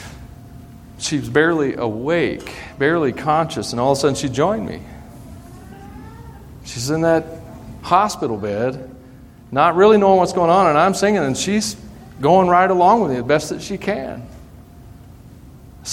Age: 40-59